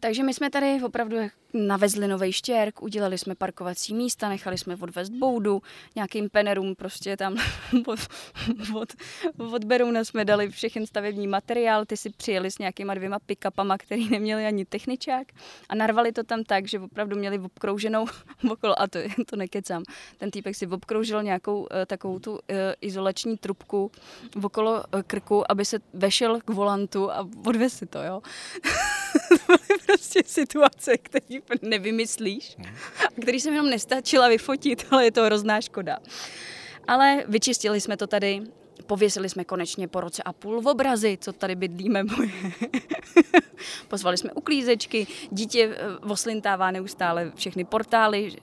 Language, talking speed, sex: Czech, 140 wpm, female